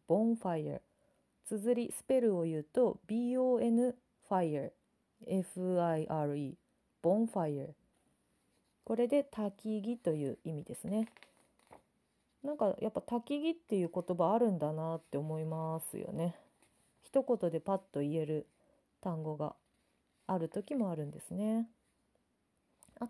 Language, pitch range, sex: Japanese, 165-235 Hz, female